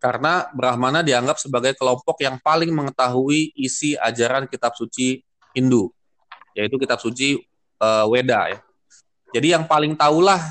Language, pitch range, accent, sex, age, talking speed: Indonesian, 115-150 Hz, native, male, 20-39, 130 wpm